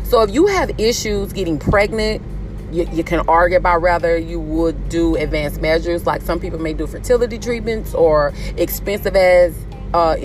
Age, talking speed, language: 30-49, 170 wpm, English